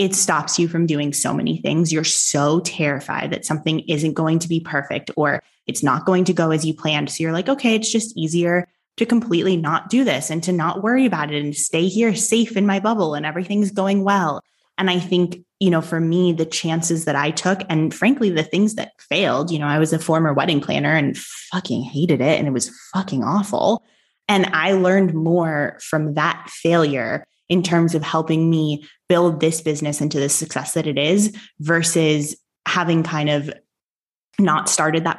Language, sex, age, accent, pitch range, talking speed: English, female, 20-39, American, 150-180 Hz, 205 wpm